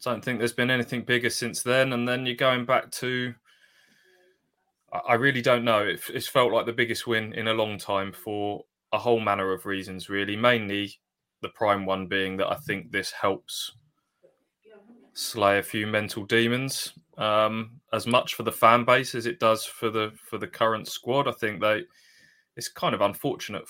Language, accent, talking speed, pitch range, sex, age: English, British, 185 wpm, 100-120 Hz, male, 20-39